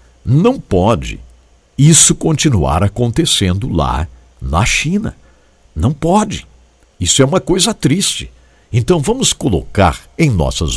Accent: Brazilian